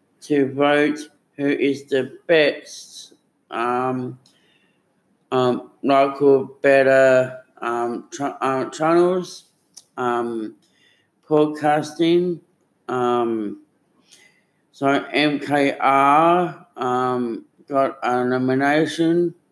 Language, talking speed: English, 70 wpm